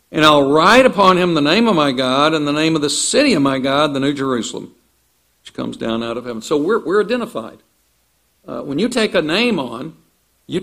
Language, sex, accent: English, male, American